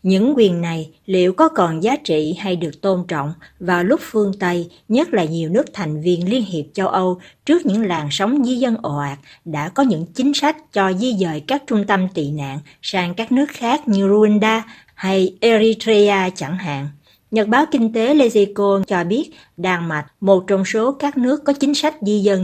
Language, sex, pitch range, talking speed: Vietnamese, female, 165-220 Hz, 205 wpm